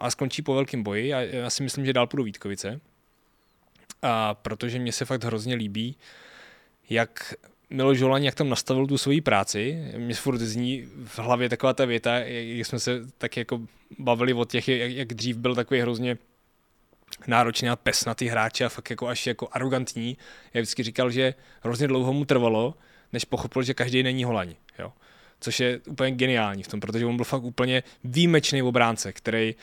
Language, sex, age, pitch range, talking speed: Czech, male, 20-39, 115-135 Hz, 180 wpm